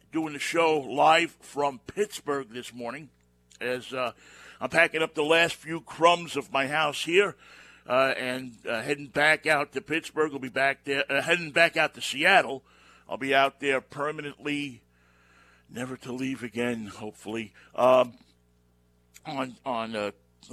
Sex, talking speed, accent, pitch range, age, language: male, 160 wpm, American, 125-150 Hz, 60-79, English